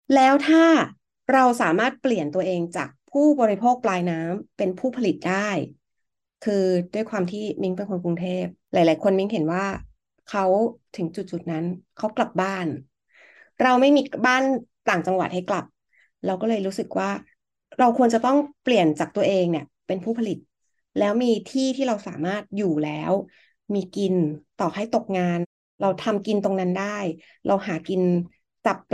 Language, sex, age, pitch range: Thai, female, 30-49, 180-230 Hz